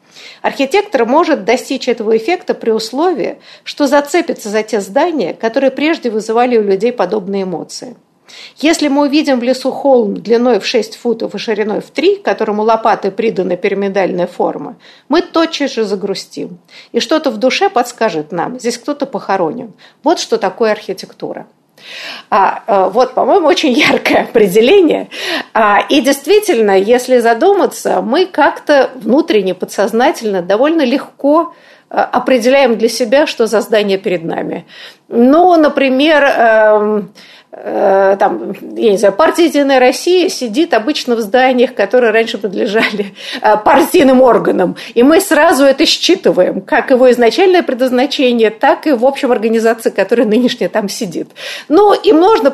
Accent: native